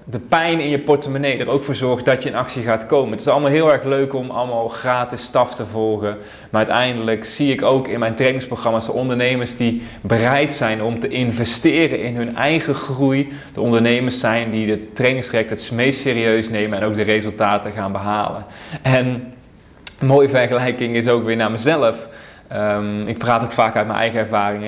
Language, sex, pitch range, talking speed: Dutch, male, 110-130 Hz, 195 wpm